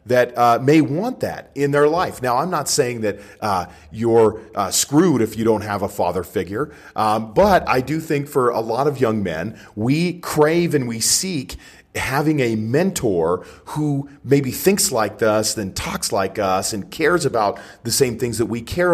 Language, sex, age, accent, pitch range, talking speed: English, male, 40-59, American, 110-150 Hz, 195 wpm